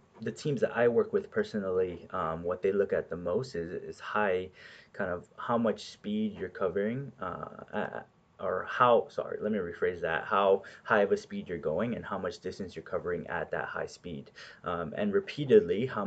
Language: English